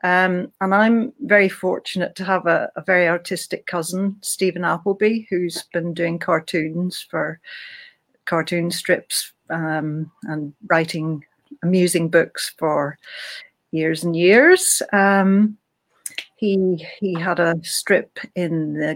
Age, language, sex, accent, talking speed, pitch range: 60-79, English, female, British, 120 wpm, 170-205 Hz